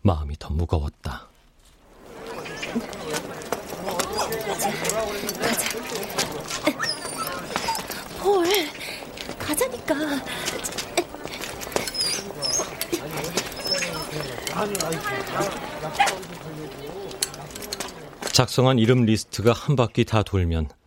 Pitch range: 80-120 Hz